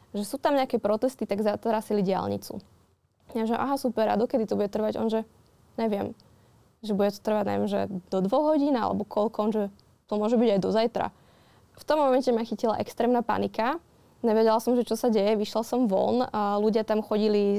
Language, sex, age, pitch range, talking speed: Slovak, female, 20-39, 205-225 Hz, 200 wpm